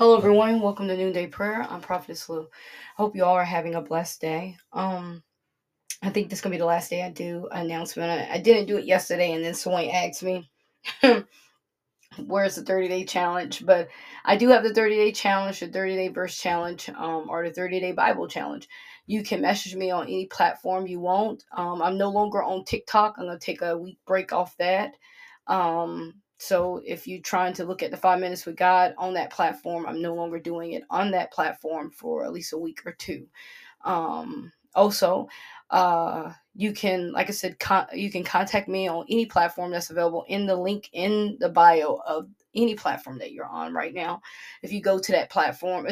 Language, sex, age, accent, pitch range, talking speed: English, female, 20-39, American, 170-200 Hz, 205 wpm